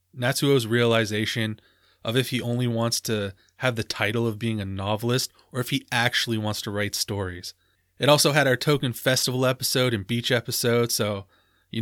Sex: male